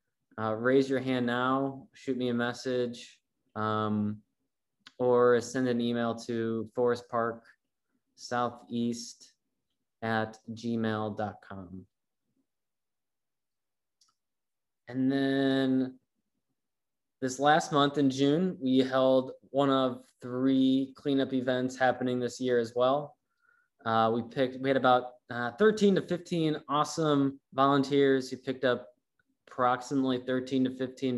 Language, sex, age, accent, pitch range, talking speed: English, male, 20-39, American, 120-135 Hz, 110 wpm